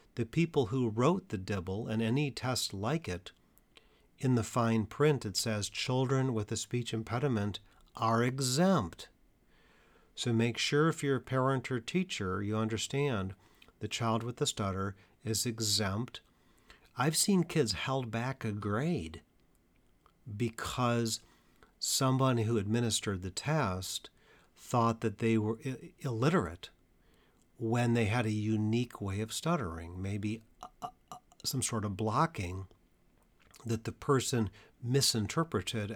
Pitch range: 105-130 Hz